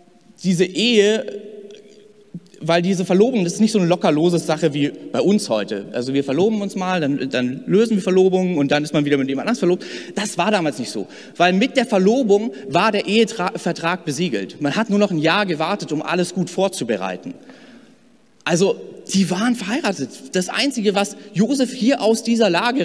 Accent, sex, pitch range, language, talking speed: German, male, 150-210 Hz, German, 185 wpm